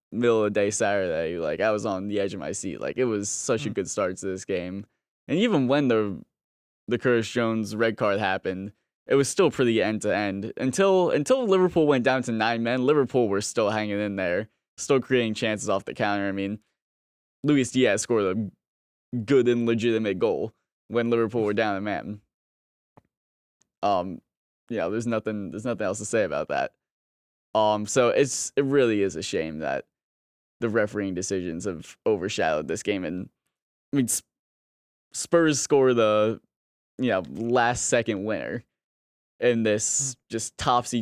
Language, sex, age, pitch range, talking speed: English, male, 10-29, 100-125 Hz, 175 wpm